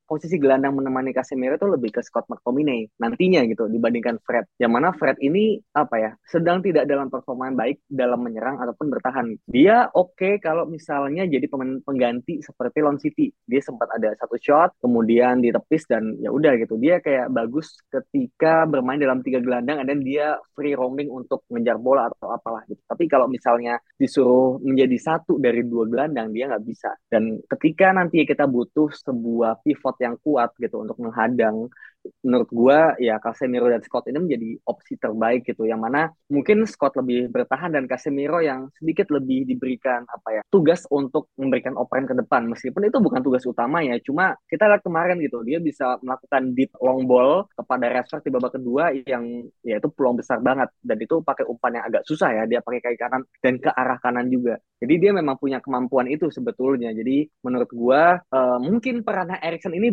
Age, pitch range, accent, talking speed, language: 20-39, 120-155 Hz, native, 185 wpm, Indonesian